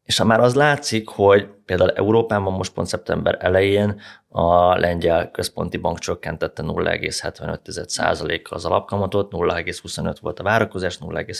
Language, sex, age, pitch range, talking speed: Hungarian, male, 30-49, 85-100 Hz, 125 wpm